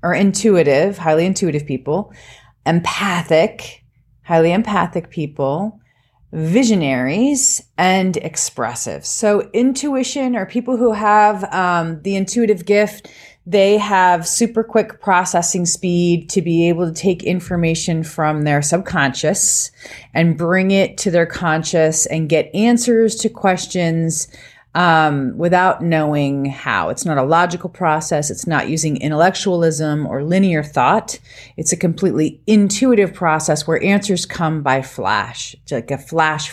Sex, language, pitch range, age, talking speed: female, English, 155-200 Hz, 30-49, 130 wpm